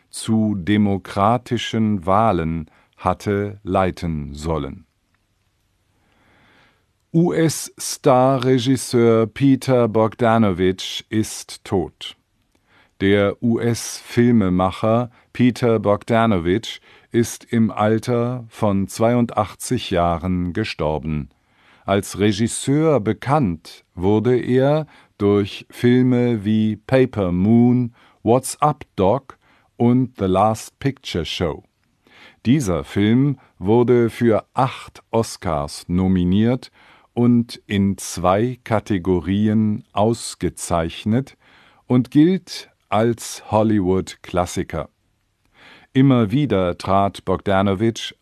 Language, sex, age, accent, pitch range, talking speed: English, male, 50-69, German, 95-120 Hz, 75 wpm